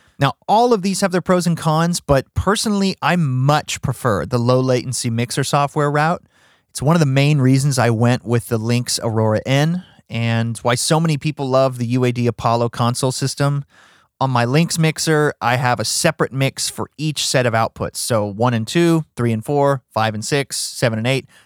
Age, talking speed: 30-49, 195 wpm